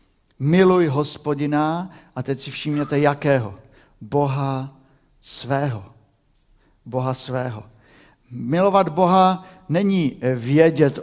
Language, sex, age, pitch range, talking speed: Czech, male, 50-69, 125-170 Hz, 80 wpm